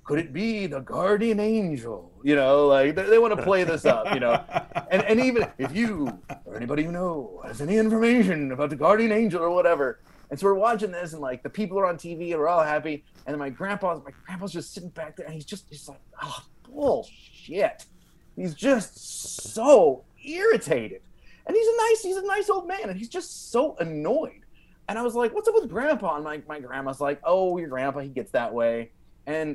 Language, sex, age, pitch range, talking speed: English, male, 30-49, 140-215 Hz, 220 wpm